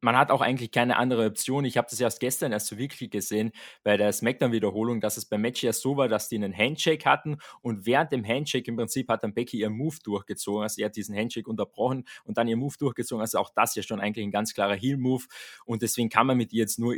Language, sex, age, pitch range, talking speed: German, male, 20-39, 110-135 Hz, 260 wpm